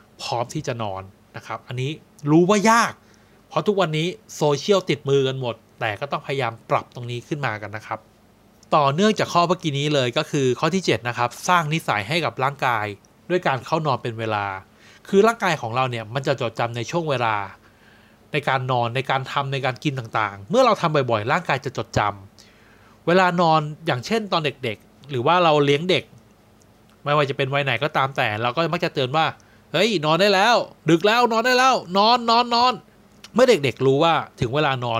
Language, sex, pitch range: Thai, male, 120-165 Hz